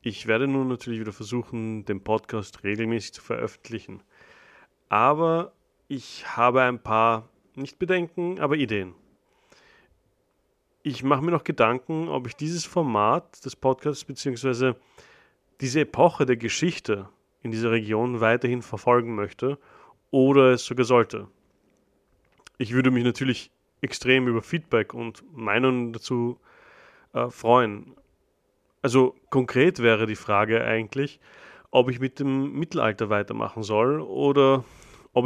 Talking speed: 125 wpm